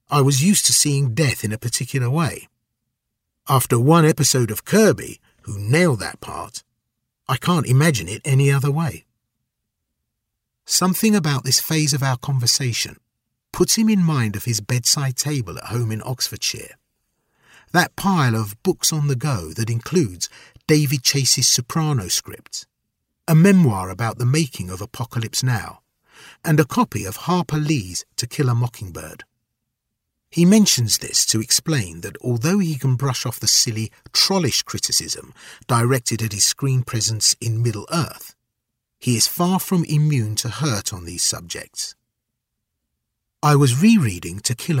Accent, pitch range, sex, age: British, 115-150 Hz, male, 50-69